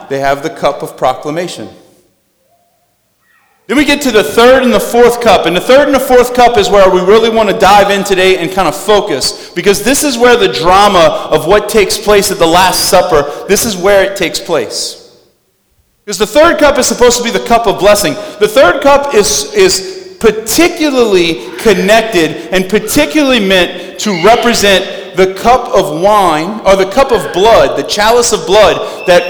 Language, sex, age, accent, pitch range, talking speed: English, male, 30-49, American, 185-240 Hz, 195 wpm